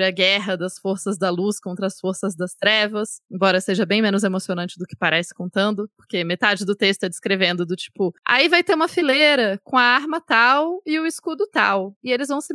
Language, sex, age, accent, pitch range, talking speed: Portuguese, female, 20-39, Brazilian, 195-260 Hz, 215 wpm